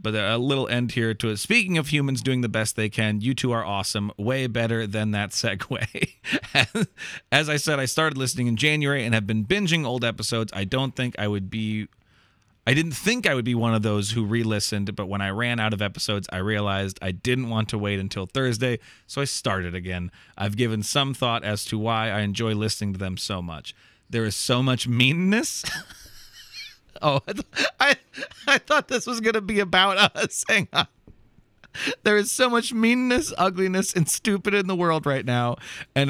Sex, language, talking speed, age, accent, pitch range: male, English, 205 wpm, 30-49, American, 105-135 Hz